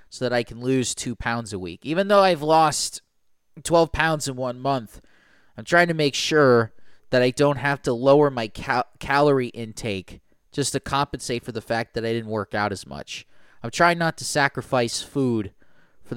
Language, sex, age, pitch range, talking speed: English, male, 20-39, 110-150 Hz, 195 wpm